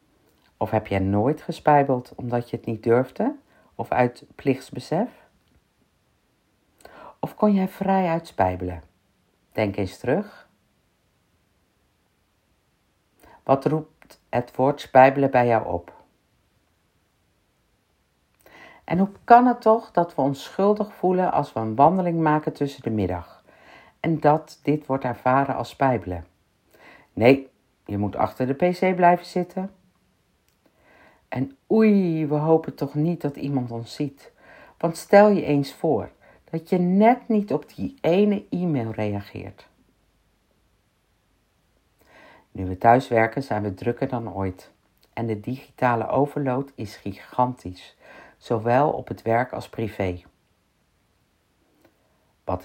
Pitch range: 95-155 Hz